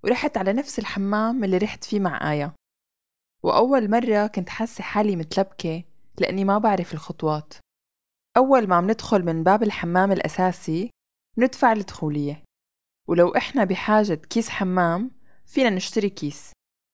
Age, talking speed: 20-39, 130 wpm